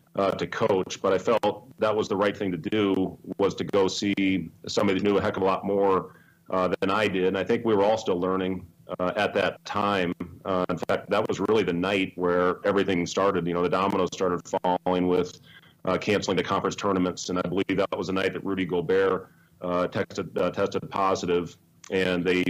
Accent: American